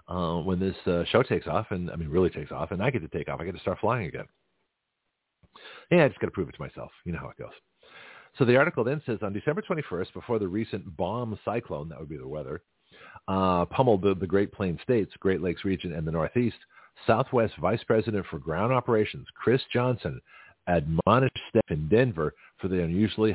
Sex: male